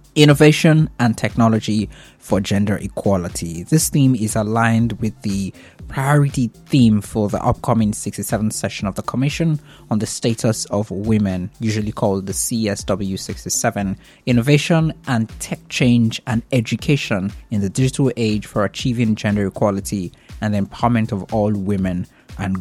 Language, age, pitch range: English, 20-39, 105-135 Hz